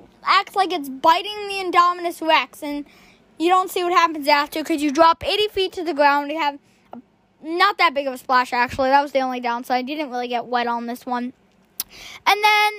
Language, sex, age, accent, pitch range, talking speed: English, female, 10-29, American, 265-370 Hz, 225 wpm